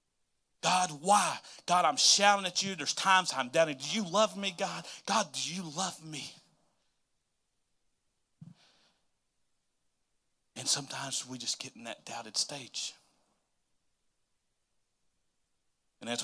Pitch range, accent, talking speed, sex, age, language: 125-155 Hz, American, 120 wpm, male, 30-49, English